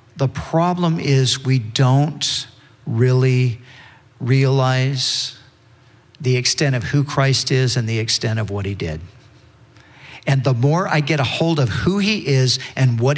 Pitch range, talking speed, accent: 125-160 Hz, 150 wpm, American